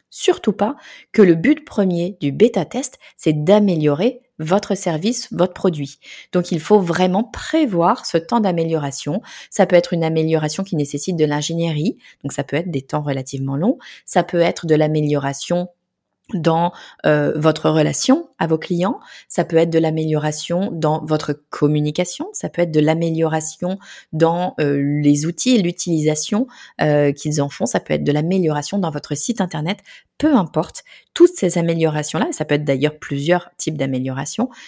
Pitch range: 150-200 Hz